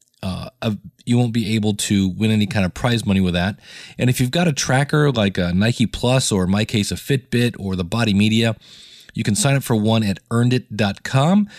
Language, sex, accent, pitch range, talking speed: English, male, American, 100-125 Hz, 215 wpm